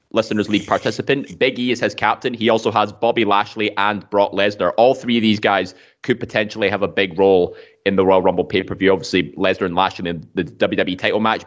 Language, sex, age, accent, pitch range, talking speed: English, male, 20-39, British, 100-120 Hz, 215 wpm